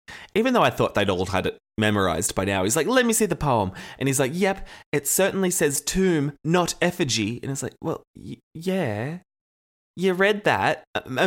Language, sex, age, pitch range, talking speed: English, male, 20-39, 110-165 Hz, 200 wpm